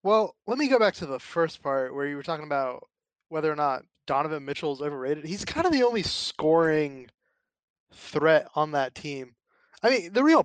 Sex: male